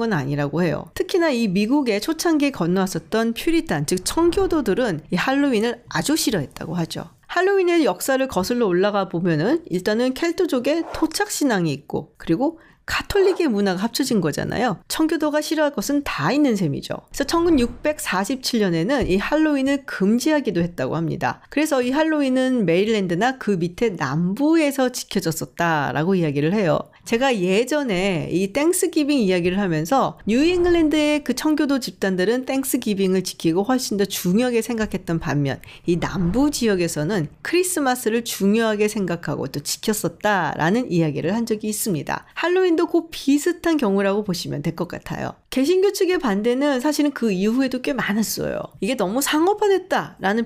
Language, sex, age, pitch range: Korean, female, 40-59, 190-300 Hz